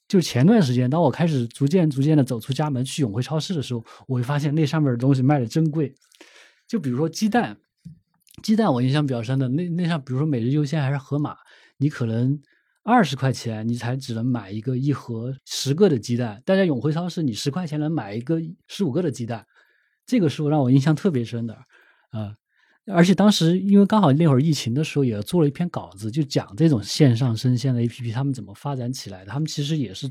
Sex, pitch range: male, 125-155 Hz